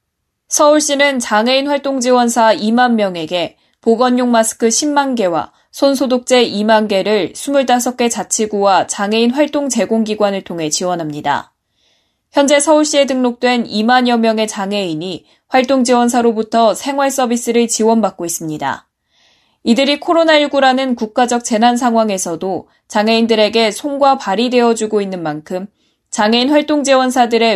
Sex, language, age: female, Korean, 20-39